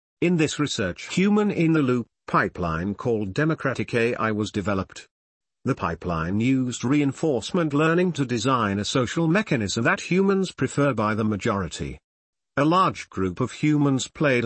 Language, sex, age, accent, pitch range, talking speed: English, male, 50-69, British, 105-150 Hz, 135 wpm